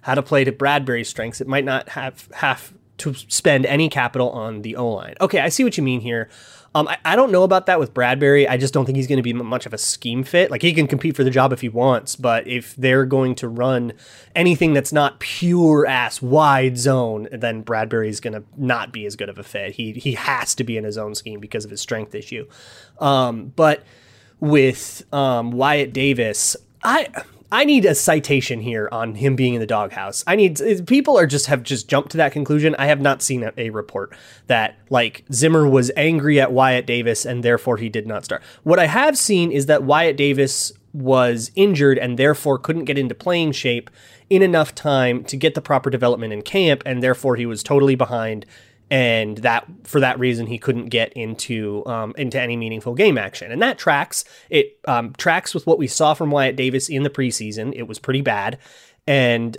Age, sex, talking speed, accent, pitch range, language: 30-49, male, 215 wpm, American, 115-145 Hz, English